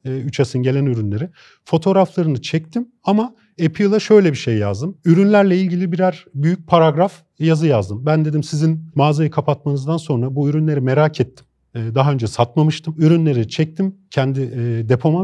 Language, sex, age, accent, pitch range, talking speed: Turkish, male, 40-59, native, 135-180 Hz, 140 wpm